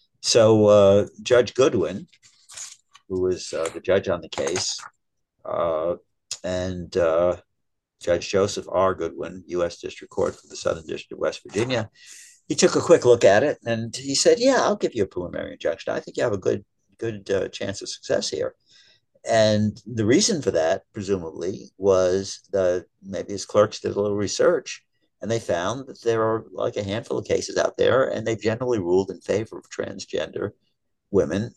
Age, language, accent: 60-79, English, American